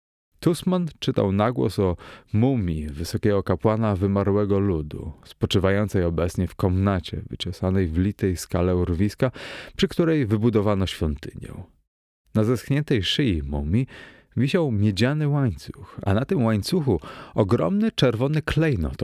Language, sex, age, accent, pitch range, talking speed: Polish, male, 30-49, native, 95-130 Hz, 115 wpm